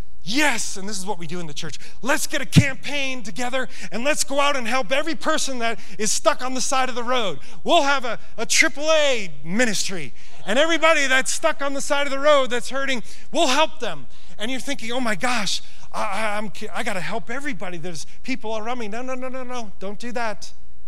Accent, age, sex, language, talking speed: American, 30-49, male, English, 225 wpm